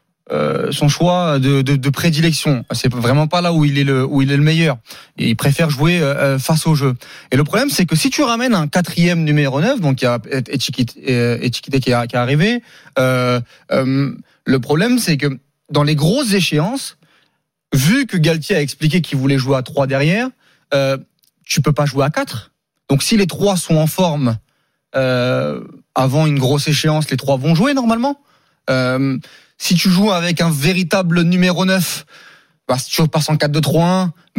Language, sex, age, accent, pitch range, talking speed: French, male, 30-49, French, 140-180 Hz, 190 wpm